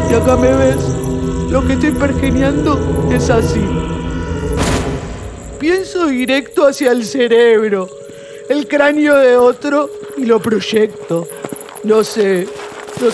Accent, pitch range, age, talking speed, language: Argentinian, 170-255 Hz, 50-69, 115 wpm, Spanish